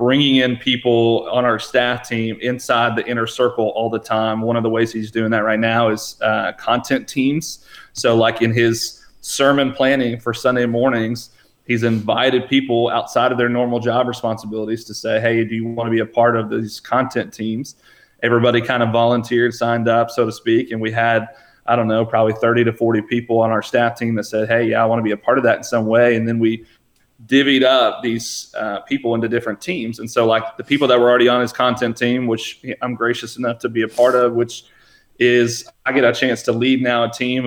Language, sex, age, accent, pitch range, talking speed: English, male, 30-49, American, 115-125 Hz, 225 wpm